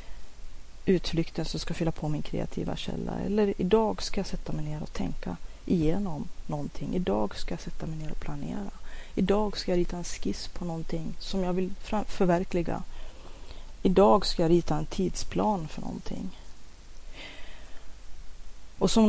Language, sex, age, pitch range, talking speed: Swedish, female, 30-49, 155-195 Hz, 155 wpm